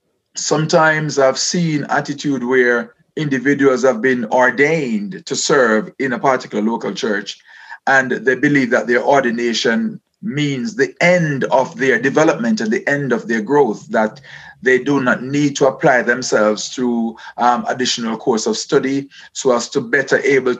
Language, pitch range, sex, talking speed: English, 125-160 Hz, male, 150 wpm